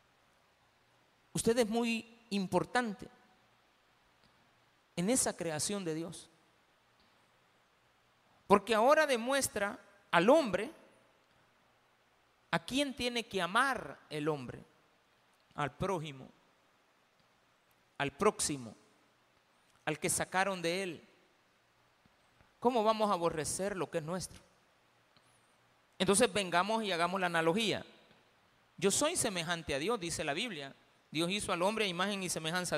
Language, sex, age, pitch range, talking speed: Spanish, male, 50-69, 170-220 Hz, 110 wpm